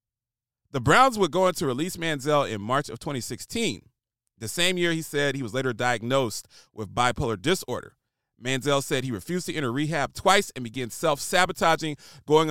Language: English